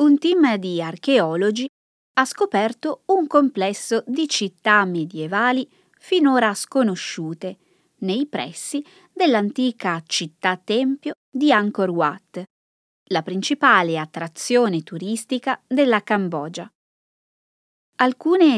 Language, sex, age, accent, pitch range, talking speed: Italian, female, 20-39, native, 175-265 Hz, 85 wpm